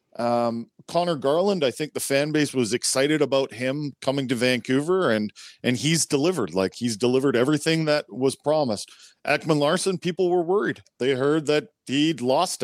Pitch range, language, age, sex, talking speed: 115-145 Hz, English, 40-59, male, 170 wpm